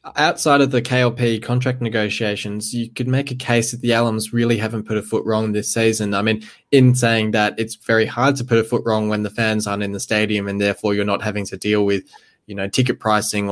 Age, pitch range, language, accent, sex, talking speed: 20-39, 100-115 Hz, English, Australian, male, 240 wpm